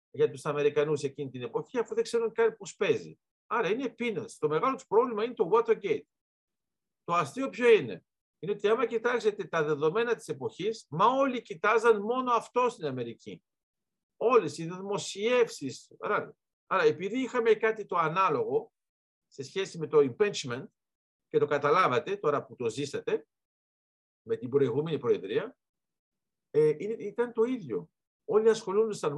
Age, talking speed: 50-69, 150 wpm